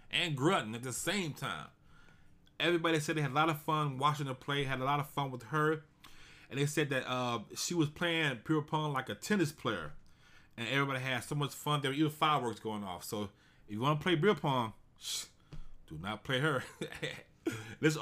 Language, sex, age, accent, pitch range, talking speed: English, male, 20-39, American, 115-160 Hz, 215 wpm